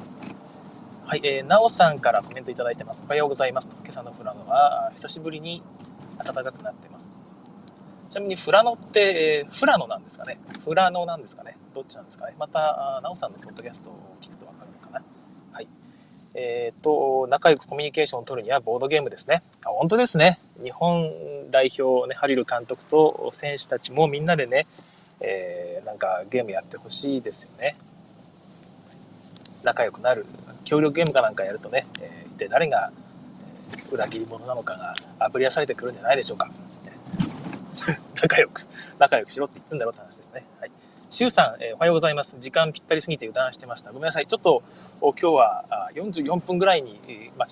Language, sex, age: Japanese, male, 20-39